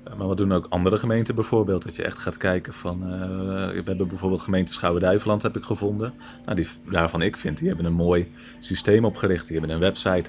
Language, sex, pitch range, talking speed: Dutch, male, 85-105 Hz, 215 wpm